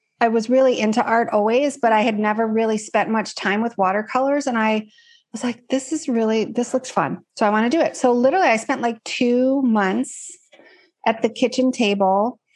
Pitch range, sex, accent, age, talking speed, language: 205-245 Hz, female, American, 30-49, 205 wpm, English